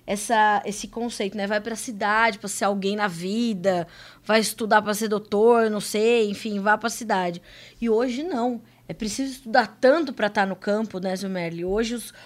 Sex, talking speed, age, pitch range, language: female, 195 wpm, 20-39, 205-285 Hz, Portuguese